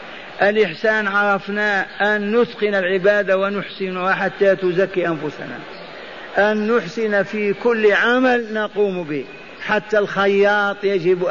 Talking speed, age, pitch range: 100 wpm, 50-69, 185-215 Hz